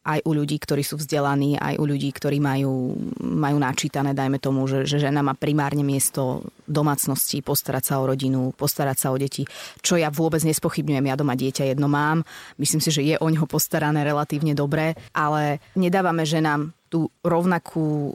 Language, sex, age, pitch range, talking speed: Slovak, female, 20-39, 145-165 Hz, 180 wpm